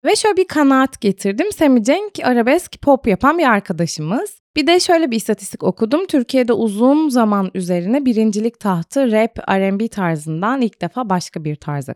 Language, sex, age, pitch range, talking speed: Turkish, female, 20-39, 185-265 Hz, 160 wpm